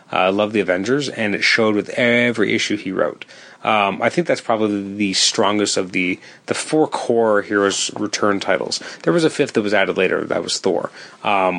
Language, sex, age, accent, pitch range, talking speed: English, male, 30-49, American, 100-120 Hz, 200 wpm